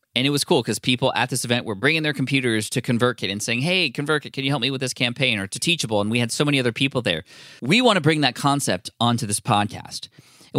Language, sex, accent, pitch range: English, male, American, 110-145 Hz